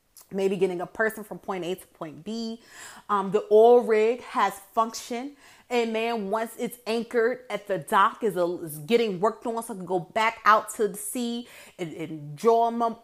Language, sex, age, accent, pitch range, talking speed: English, female, 30-49, American, 205-315 Hz, 185 wpm